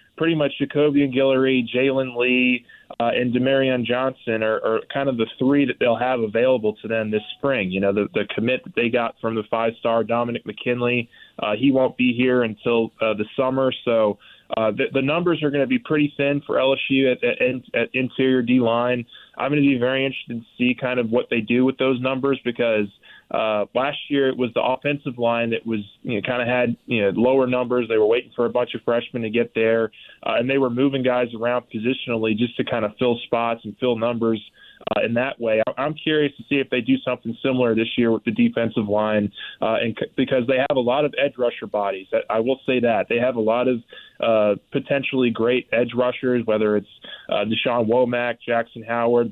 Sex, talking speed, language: male, 225 wpm, English